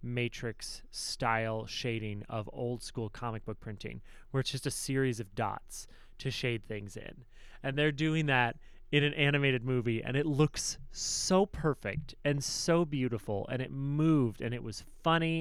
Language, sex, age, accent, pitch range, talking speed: English, male, 30-49, American, 110-135 Hz, 170 wpm